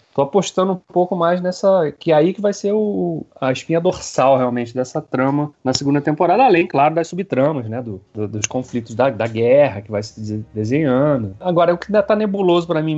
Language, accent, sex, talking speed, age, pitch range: Portuguese, Brazilian, male, 215 wpm, 30-49, 120-175 Hz